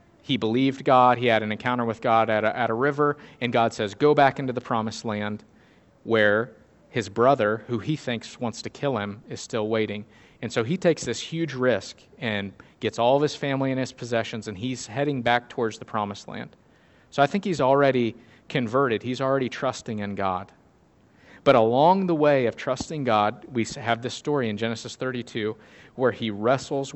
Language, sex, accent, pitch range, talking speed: English, male, American, 110-140 Hz, 195 wpm